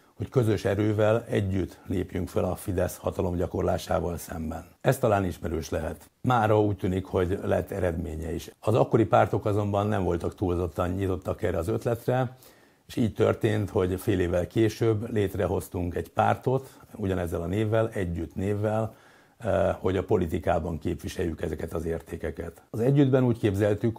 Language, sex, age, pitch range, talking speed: Hungarian, male, 60-79, 90-115 Hz, 150 wpm